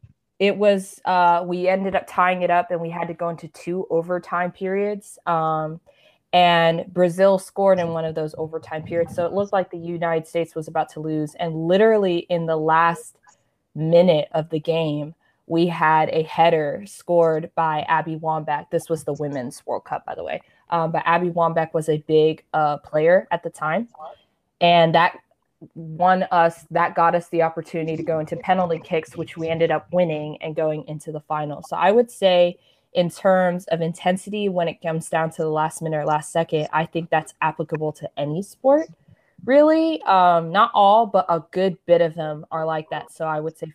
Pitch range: 155-180 Hz